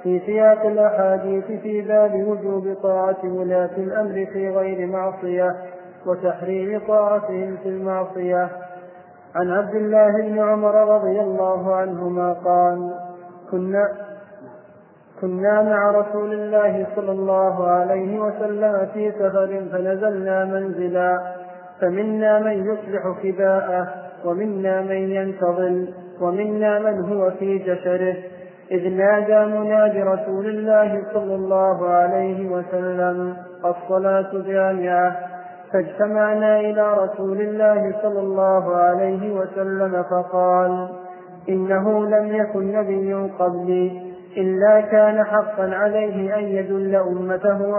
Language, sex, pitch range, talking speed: Arabic, male, 180-210 Hz, 105 wpm